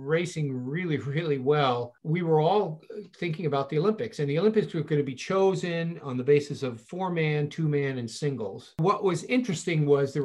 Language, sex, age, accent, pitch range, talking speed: English, male, 50-69, American, 125-165 Hz, 200 wpm